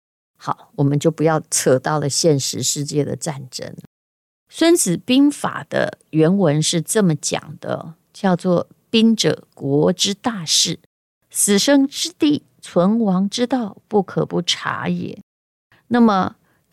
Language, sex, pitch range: Chinese, female, 155-200 Hz